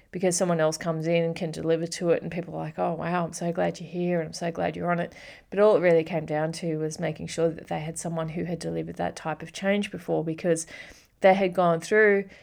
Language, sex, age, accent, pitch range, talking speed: English, female, 30-49, Australian, 165-185 Hz, 265 wpm